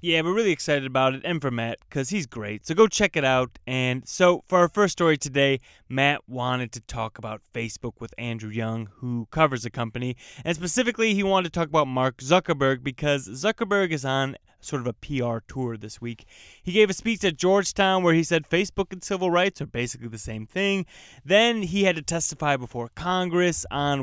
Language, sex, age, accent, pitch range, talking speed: English, male, 20-39, American, 120-165 Hz, 205 wpm